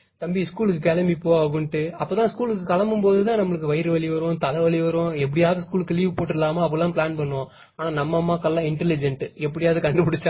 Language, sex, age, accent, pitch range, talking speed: Tamil, male, 20-39, native, 155-190 Hz, 175 wpm